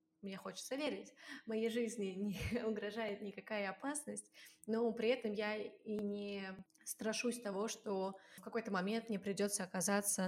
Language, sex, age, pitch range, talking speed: Russian, female, 20-39, 205-245 Hz, 140 wpm